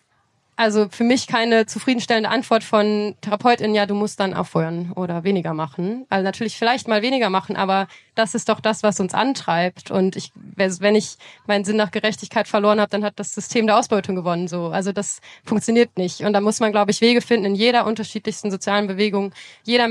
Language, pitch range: German, 190-215 Hz